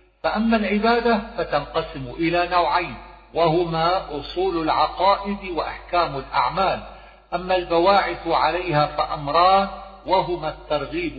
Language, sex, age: Arabic, male, 50-69